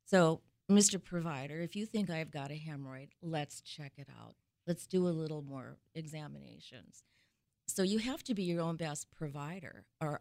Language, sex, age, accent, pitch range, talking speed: English, female, 50-69, American, 135-175 Hz, 175 wpm